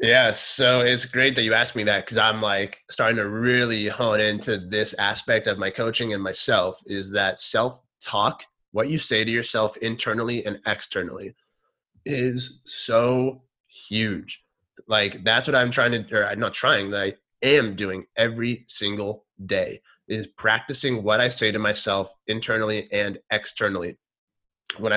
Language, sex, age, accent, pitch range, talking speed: English, male, 20-39, American, 100-120 Hz, 160 wpm